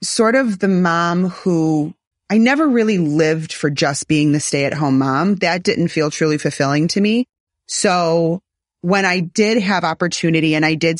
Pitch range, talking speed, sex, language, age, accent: 150-190 Hz, 180 wpm, female, English, 30-49, American